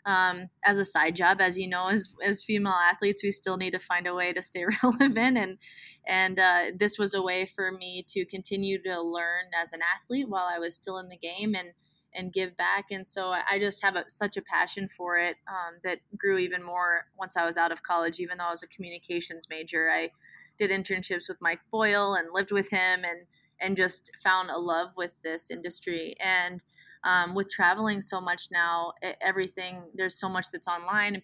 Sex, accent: female, American